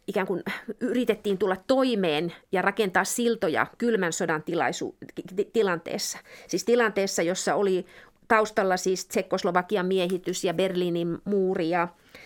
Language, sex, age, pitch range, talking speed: Finnish, female, 30-49, 185-235 Hz, 105 wpm